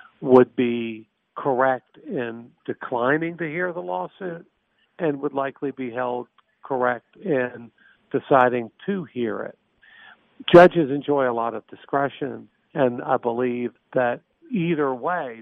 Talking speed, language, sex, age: 125 wpm, English, male, 50-69